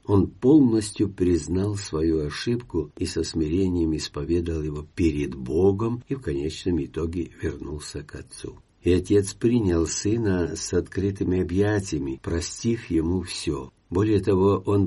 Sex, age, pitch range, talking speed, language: male, 50-69, 85-105 Hz, 130 wpm, Russian